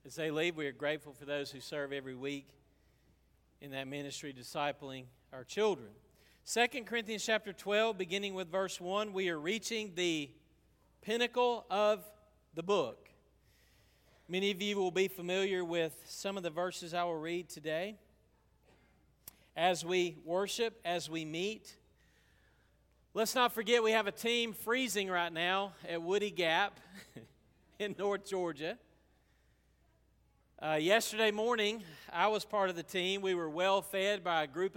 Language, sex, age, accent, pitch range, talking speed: English, male, 40-59, American, 155-205 Hz, 150 wpm